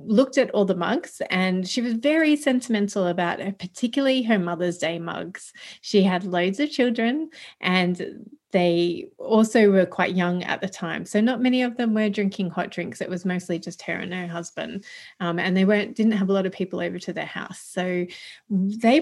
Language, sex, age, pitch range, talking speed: English, female, 30-49, 180-215 Hz, 200 wpm